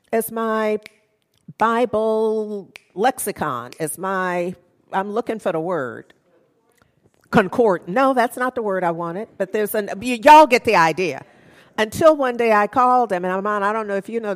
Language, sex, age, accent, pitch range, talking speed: English, female, 50-69, American, 170-255 Hz, 170 wpm